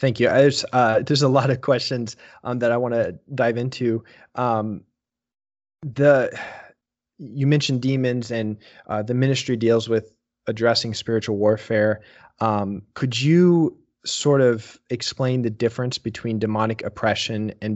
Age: 20-39